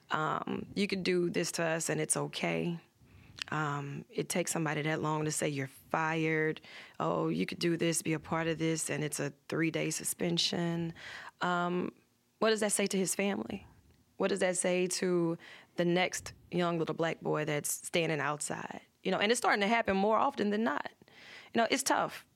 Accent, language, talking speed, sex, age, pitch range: American, English, 195 wpm, female, 20-39, 160-200 Hz